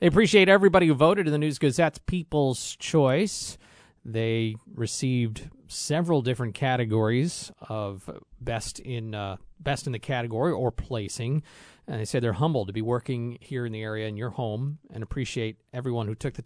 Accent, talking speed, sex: American, 170 wpm, male